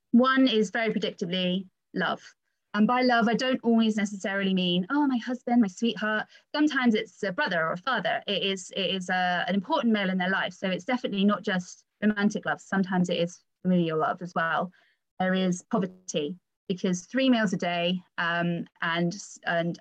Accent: British